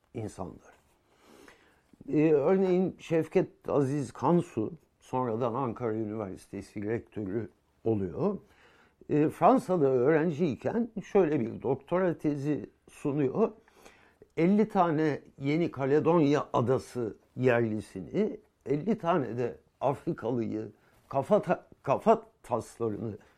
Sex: male